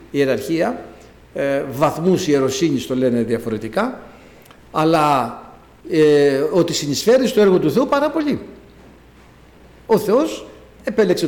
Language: Greek